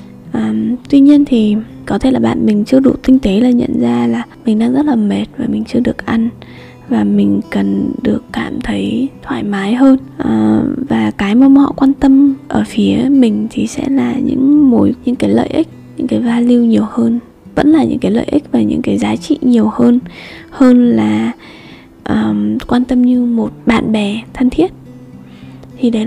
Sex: female